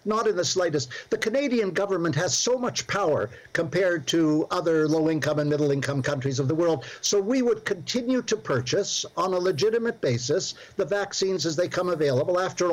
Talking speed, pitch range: 180 wpm, 150-190 Hz